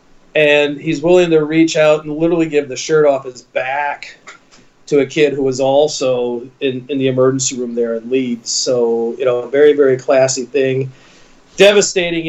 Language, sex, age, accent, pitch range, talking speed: English, male, 40-59, American, 125-160 Hz, 180 wpm